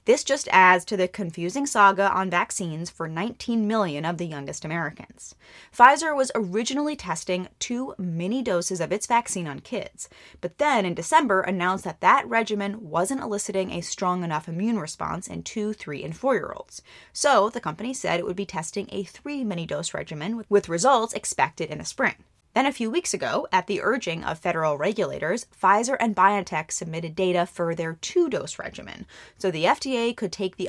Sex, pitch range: female, 170-225 Hz